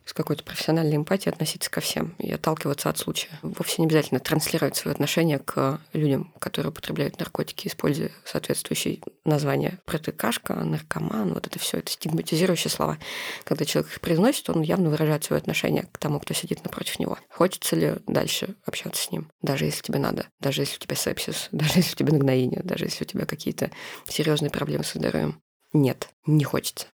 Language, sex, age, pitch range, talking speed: Russian, female, 20-39, 150-180 Hz, 180 wpm